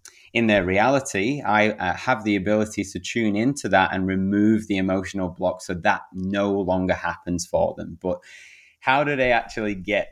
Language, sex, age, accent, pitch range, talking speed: English, male, 20-39, British, 95-115 Hz, 180 wpm